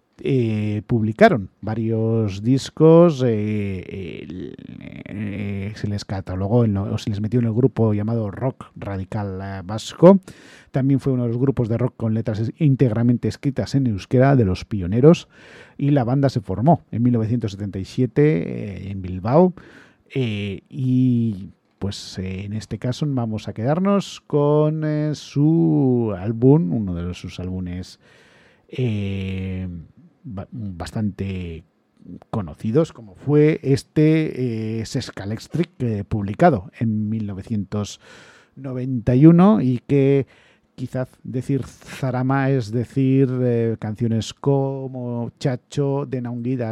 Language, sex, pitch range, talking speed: English, male, 105-135 Hz, 115 wpm